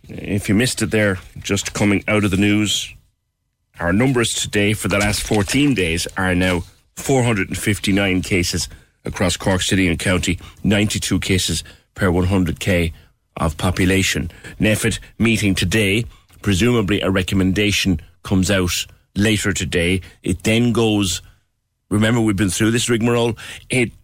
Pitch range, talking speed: 90-110 Hz, 130 wpm